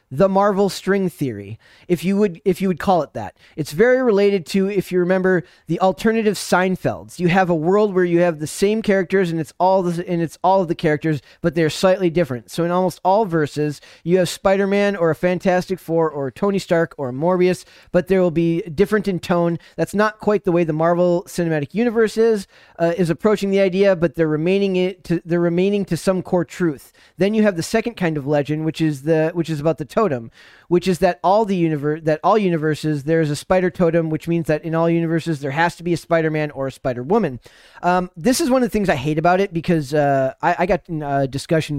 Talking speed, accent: 230 wpm, American